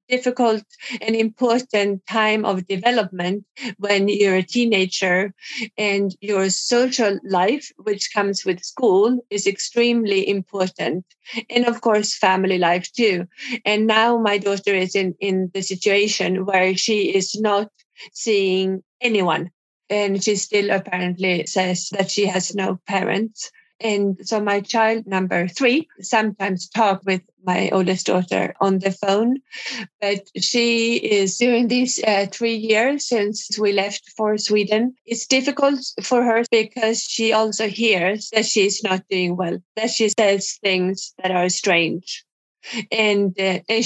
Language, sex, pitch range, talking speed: English, female, 190-225 Hz, 140 wpm